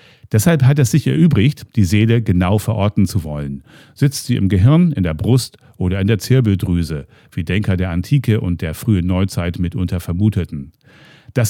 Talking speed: 170 wpm